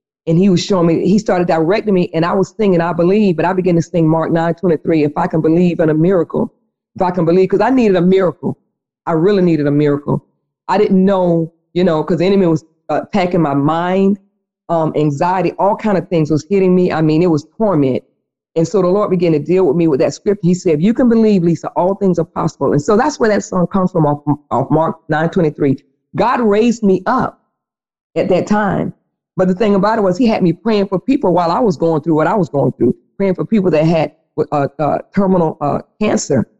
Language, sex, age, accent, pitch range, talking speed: English, female, 40-59, American, 155-190 Hz, 240 wpm